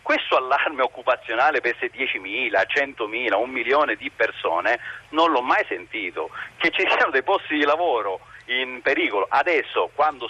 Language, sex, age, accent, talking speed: Italian, male, 40-59, native, 150 wpm